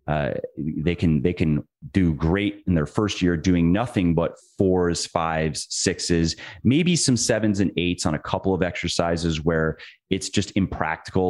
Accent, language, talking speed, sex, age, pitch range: American, English, 165 wpm, male, 30-49, 80-100 Hz